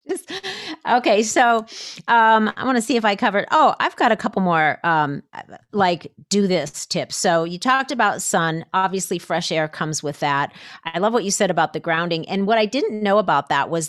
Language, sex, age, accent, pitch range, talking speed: English, female, 40-59, American, 165-220 Hz, 205 wpm